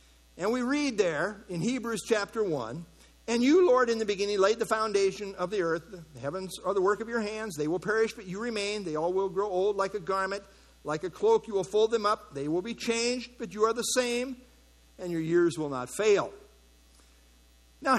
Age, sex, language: 50-69, male, English